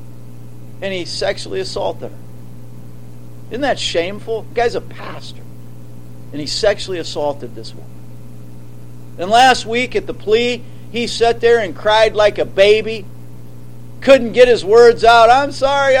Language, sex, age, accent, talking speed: English, male, 50-69, American, 145 wpm